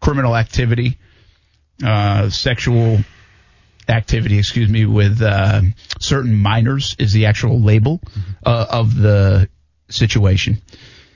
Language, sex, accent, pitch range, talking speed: English, male, American, 100-120 Hz, 100 wpm